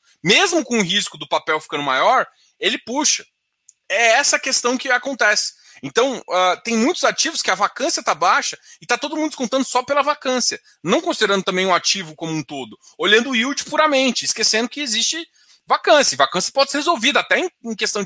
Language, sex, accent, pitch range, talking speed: Portuguese, male, Brazilian, 205-280 Hz, 190 wpm